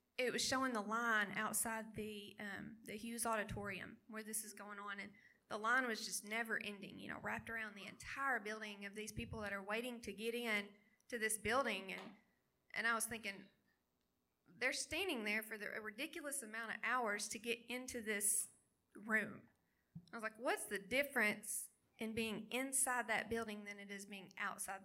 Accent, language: American, English